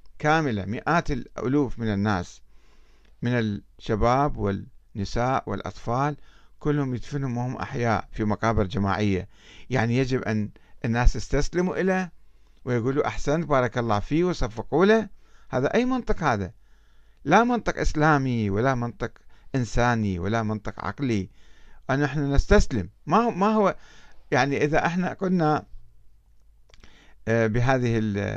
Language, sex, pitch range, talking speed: Arabic, male, 110-175 Hz, 110 wpm